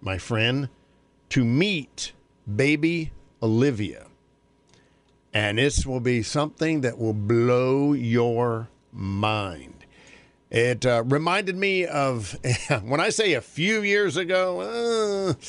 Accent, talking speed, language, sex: American, 110 wpm, English, male